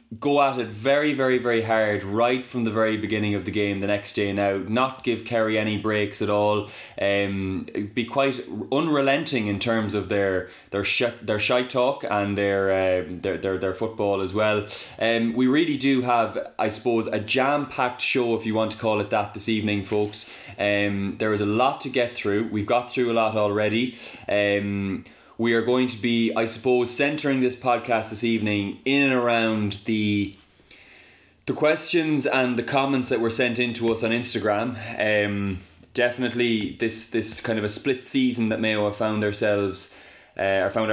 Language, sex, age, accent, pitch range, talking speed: English, male, 20-39, Irish, 105-125 Hz, 185 wpm